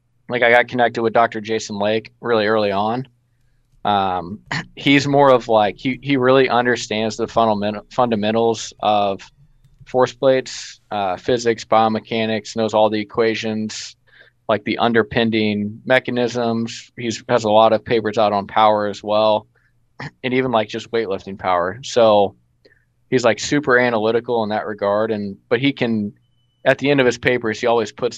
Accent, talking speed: American, 165 wpm